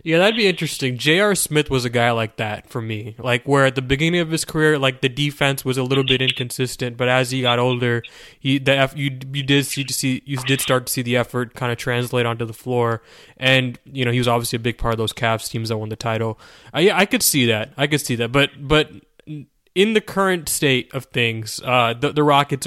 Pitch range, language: 120-145 Hz, English